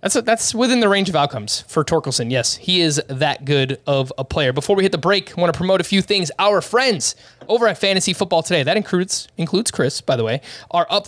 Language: English